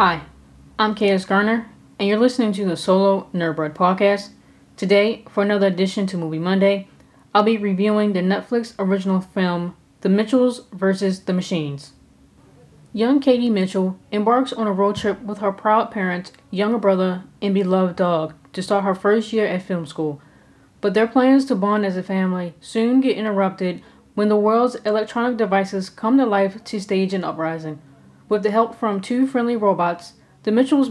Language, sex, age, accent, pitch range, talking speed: English, female, 20-39, American, 185-225 Hz, 170 wpm